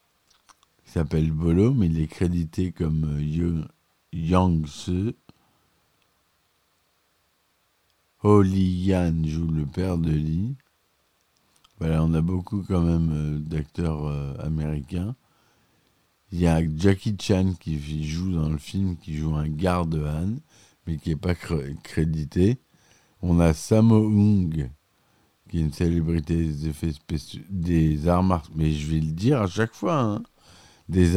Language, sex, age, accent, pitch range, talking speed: French, male, 50-69, French, 80-90 Hz, 135 wpm